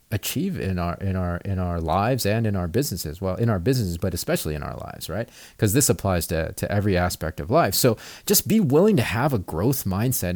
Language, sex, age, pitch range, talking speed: English, male, 30-49, 95-120 Hz, 230 wpm